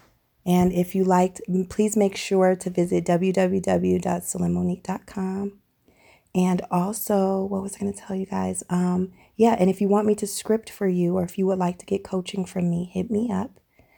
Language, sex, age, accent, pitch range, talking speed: English, female, 30-49, American, 175-200 Hz, 190 wpm